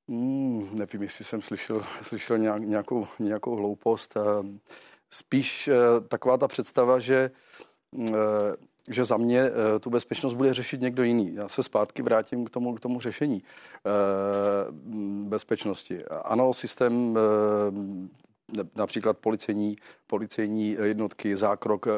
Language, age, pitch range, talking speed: Czech, 40-59, 105-120 Hz, 105 wpm